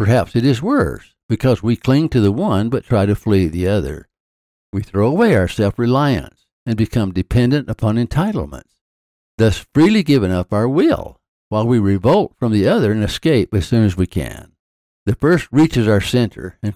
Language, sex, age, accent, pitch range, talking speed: English, male, 60-79, American, 90-120 Hz, 185 wpm